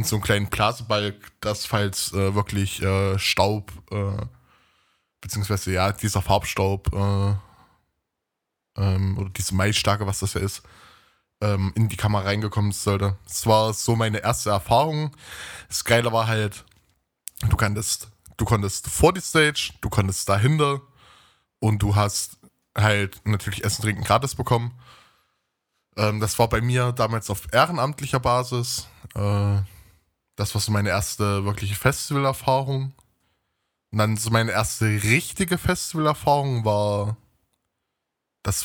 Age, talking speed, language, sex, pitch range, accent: 10-29, 135 wpm, German, male, 100-115 Hz, German